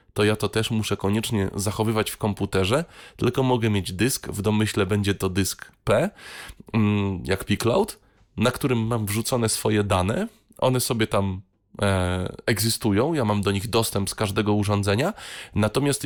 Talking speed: 150 wpm